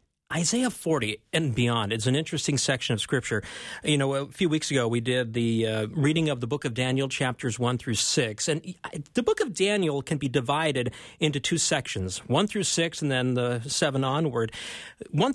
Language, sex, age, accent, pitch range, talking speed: English, male, 40-59, American, 125-175 Hz, 195 wpm